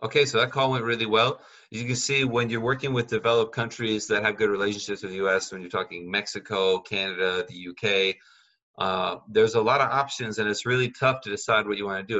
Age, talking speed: 30-49, 225 wpm